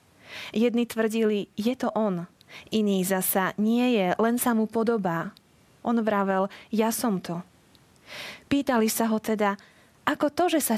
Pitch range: 195-235 Hz